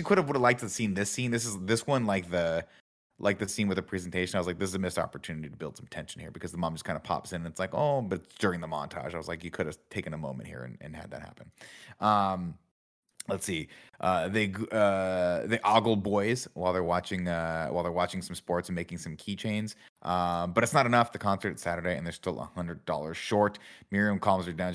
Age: 30-49